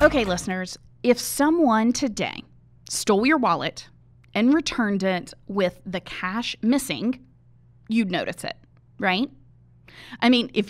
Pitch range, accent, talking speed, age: 185-245 Hz, American, 125 wpm, 20-39